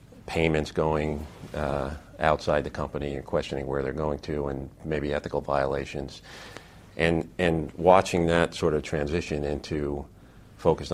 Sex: male